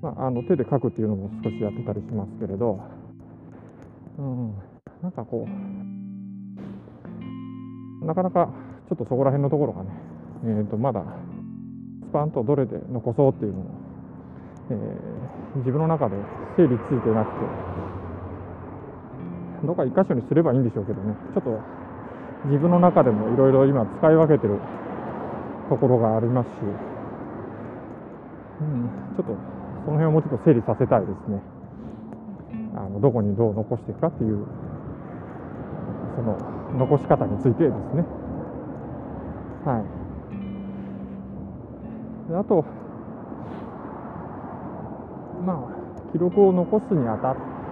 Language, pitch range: Japanese, 105-155 Hz